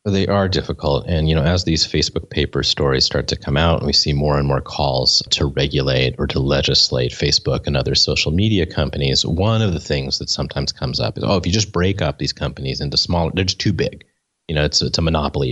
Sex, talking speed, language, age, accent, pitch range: male, 245 wpm, English, 30-49, American, 75-95 Hz